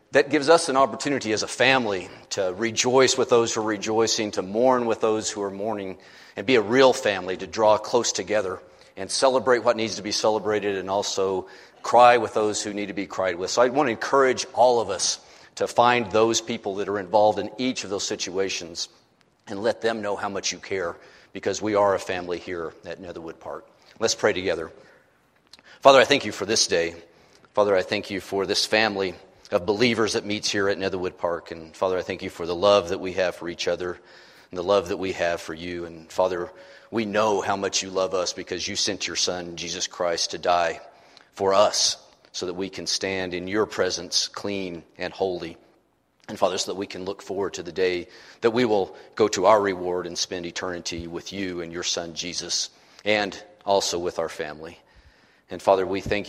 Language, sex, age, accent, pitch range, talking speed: English, male, 40-59, American, 90-110 Hz, 215 wpm